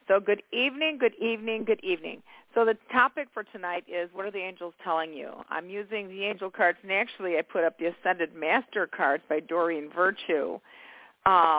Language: English